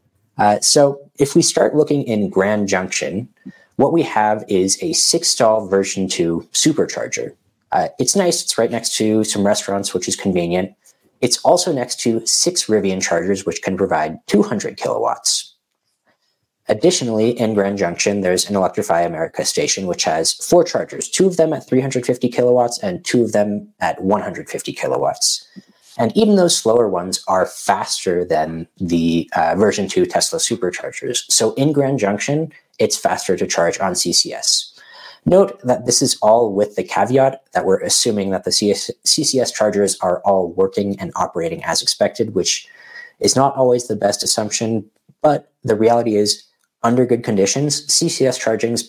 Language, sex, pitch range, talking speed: English, male, 100-135 Hz, 160 wpm